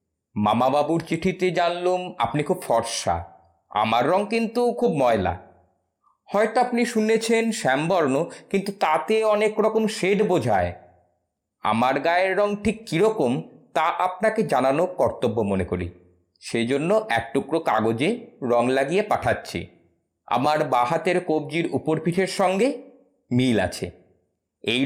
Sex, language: male, Bengali